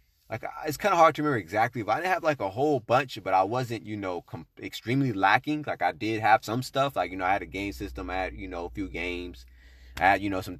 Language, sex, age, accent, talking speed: English, male, 20-39, American, 275 wpm